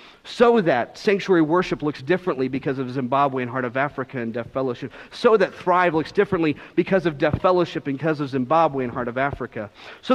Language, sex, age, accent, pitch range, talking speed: English, male, 40-59, American, 135-175 Hz, 200 wpm